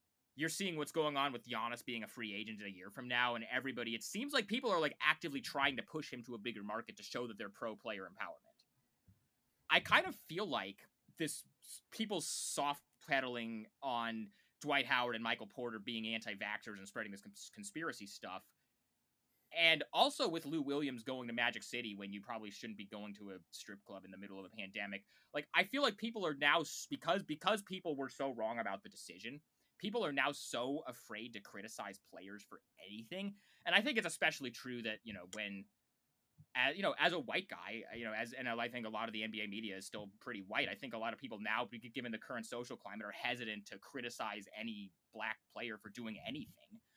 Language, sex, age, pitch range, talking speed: English, male, 20-39, 110-150 Hz, 215 wpm